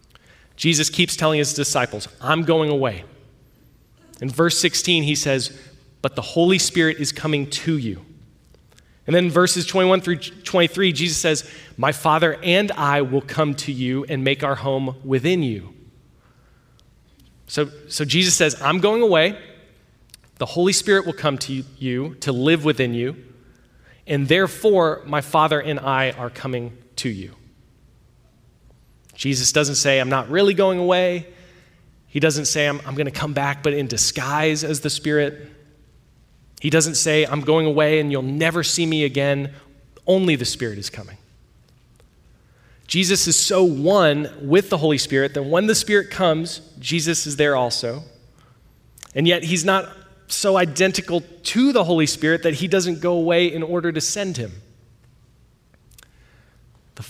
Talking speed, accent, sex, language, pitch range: 155 wpm, American, male, English, 135-170 Hz